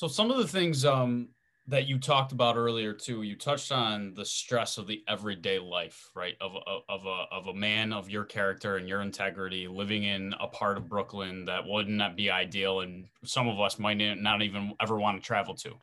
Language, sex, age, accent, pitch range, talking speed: English, male, 20-39, American, 105-125 Hz, 215 wpm